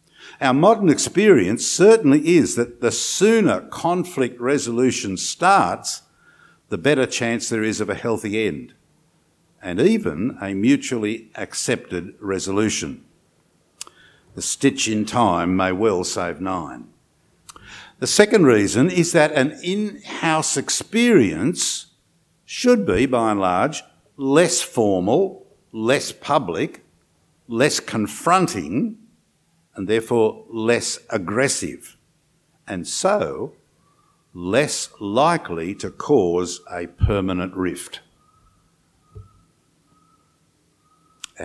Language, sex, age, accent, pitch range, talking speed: English, male, 60-79, Australian, 105-165 Hz, 95 wpm